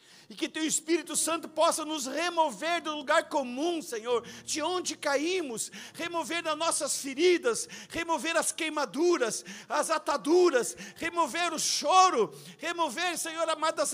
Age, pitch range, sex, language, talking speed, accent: 50-69, 205-340 Hz, male, Portuguese, 135 wpm, Brazilian